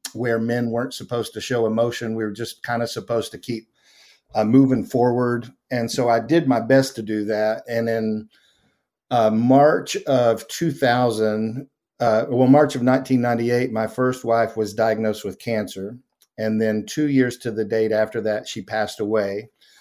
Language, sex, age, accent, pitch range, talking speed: English, male, 50-69, American, 115-130 Hz, 175 wpm